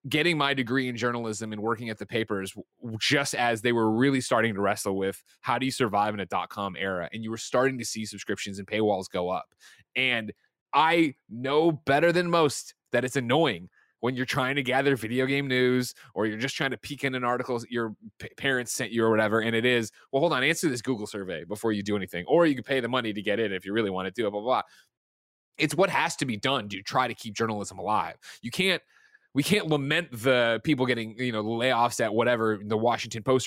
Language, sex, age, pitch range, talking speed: English, male, 20-39, 105-130 Hz, 240 wpm